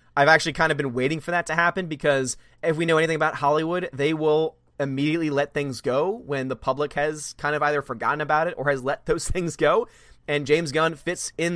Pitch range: 135-160 Hz